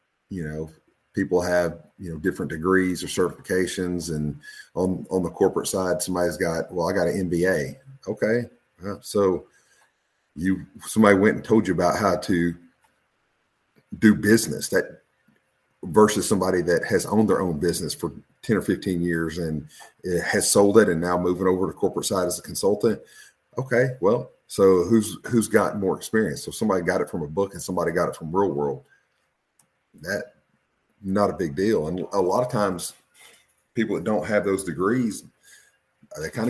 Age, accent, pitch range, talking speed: 40-59, American, 85-100 Hz, 175 wpm